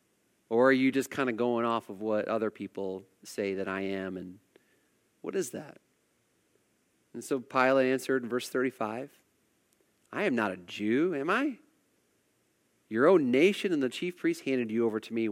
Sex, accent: male, American